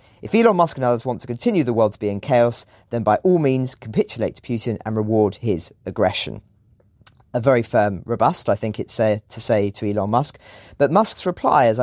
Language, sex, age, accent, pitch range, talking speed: English, male, 40-59, British, 110-150 Hz, 215 wpm